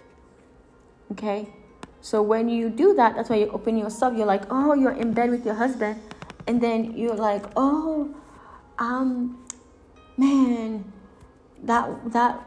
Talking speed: 140 wpm